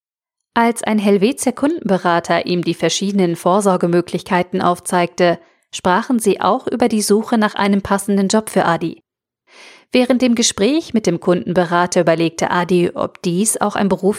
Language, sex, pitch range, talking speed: German, female, 180-225 Hz, 145 wpm